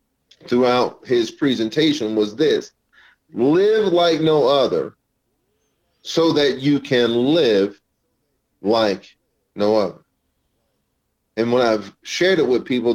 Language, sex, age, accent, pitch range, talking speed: English, male, 40-59, American, 120-155 Hz, 110 wpm